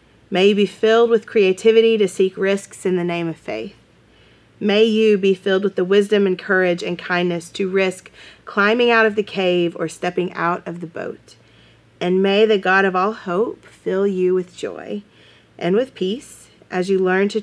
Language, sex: English, female